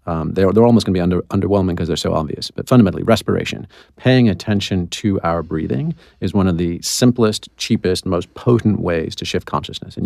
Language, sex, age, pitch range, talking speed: English, male, 40-59, 90-110 Hz, 205 wpm